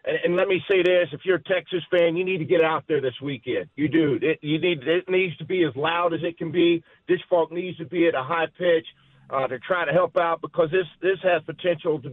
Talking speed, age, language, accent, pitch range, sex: 265 wpm, 50-69, English, American, 155-185 Hz, male